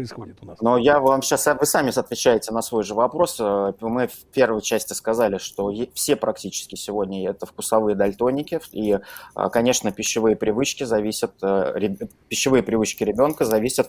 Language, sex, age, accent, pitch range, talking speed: Russian, male, 20-39, native, 105-125 Hz, 140 wpm